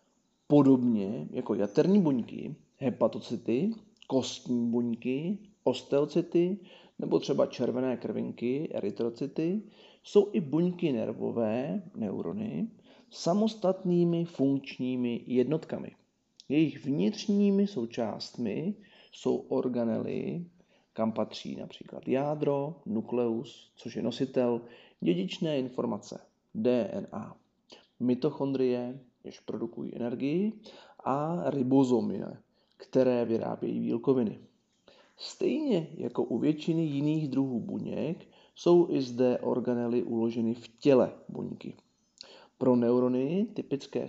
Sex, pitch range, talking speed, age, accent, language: male, 125-185 Hz, 85 wpm, 40-59, native, Czech